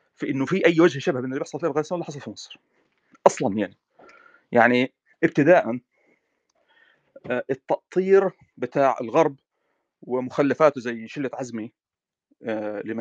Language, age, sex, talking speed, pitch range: Arabic, 40-59, male, 125 wpm, 130-175 Hz